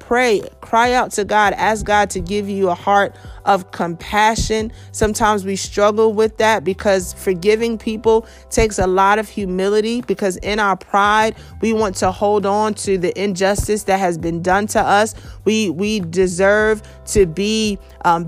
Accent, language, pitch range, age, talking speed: American, English, 185-215 Hz, 30-49, 165 wpm